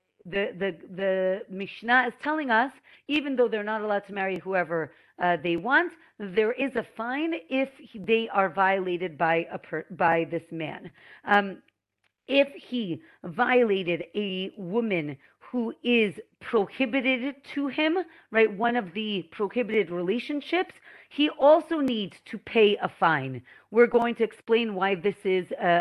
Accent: American